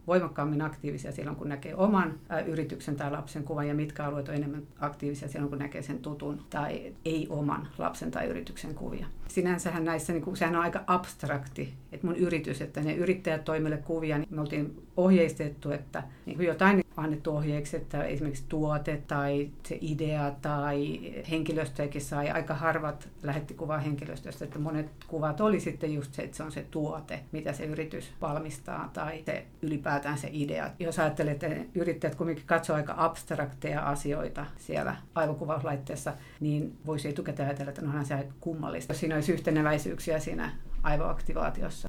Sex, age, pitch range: female, 50-69, 145-165 Hz